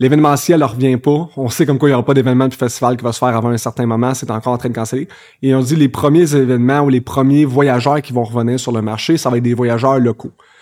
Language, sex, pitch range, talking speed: French, male, 125-145 Hz, 290 wpm